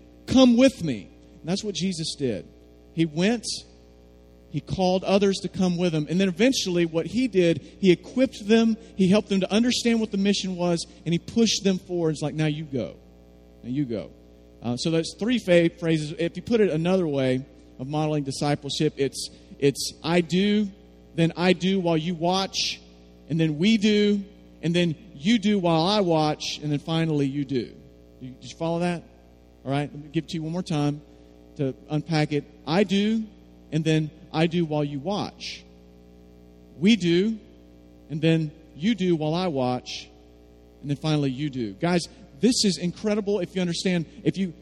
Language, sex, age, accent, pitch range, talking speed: English, male, 40-59, American, 135-190 Hz, 185 wpm